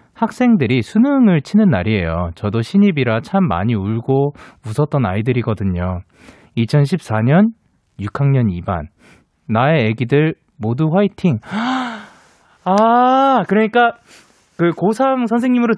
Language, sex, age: Korean, male, 20-39